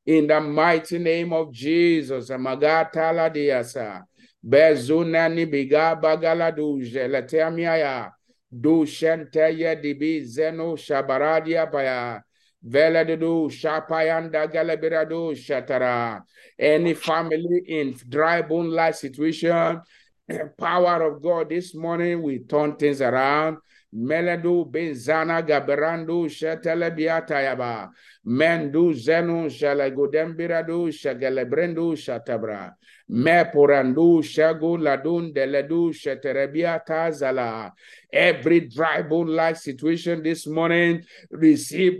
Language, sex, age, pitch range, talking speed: English, male, 50-69, 150-165 Hz, 90 wpm